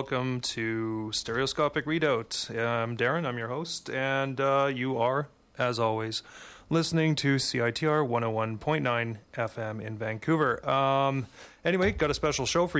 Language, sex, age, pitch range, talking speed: English, male, 30-49, 115-140 Hz, 140 wpm